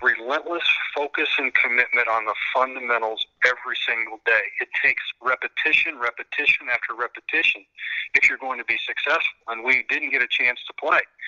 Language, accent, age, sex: English, American, 50-69, male